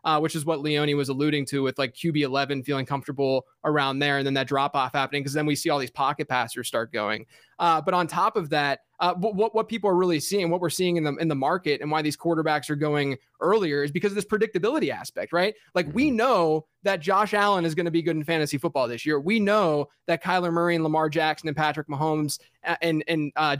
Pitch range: 145-180 Hz